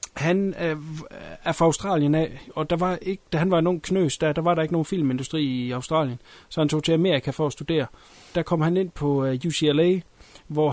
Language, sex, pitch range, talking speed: Danish, male, 145-180 Hz, 205 wpm